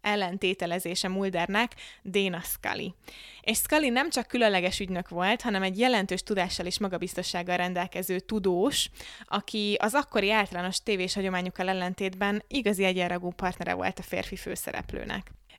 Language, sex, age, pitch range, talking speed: Hungarian, female, 20-39, 185-220 Hz, 125 wpm